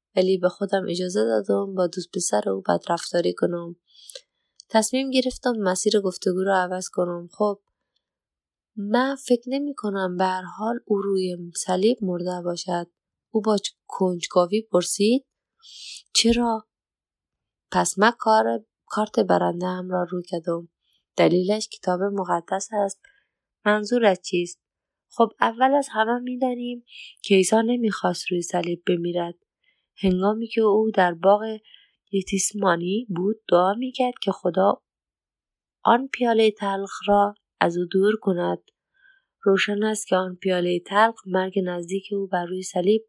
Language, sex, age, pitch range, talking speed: Persian, female, 20-39, 180-215 Hz, 130 wpm